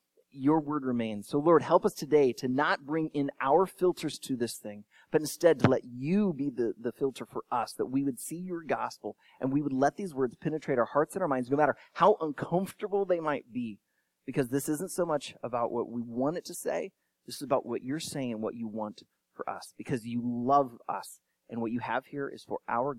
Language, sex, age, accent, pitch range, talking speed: English, male, 30-49, American, 120-190 Hz, 230 wpm